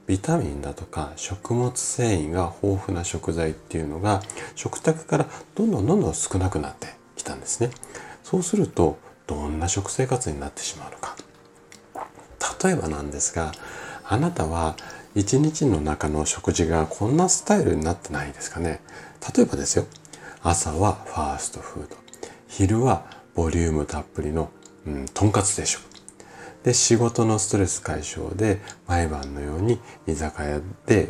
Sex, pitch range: male, 75-105 Hz